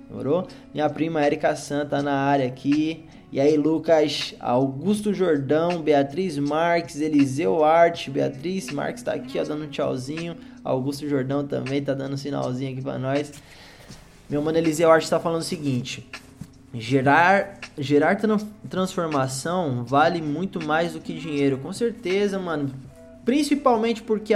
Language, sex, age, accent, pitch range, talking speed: Portuguese, male, 20-39, Brazilian, 140-195 Hz, 145 wpm